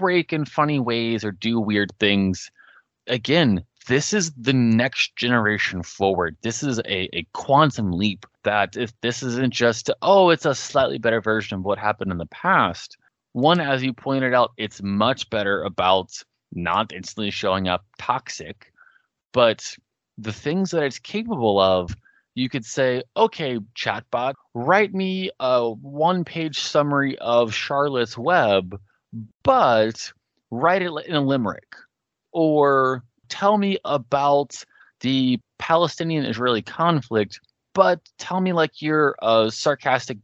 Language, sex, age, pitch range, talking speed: English, male, 20-39, 110-165 Hz, 140 wpm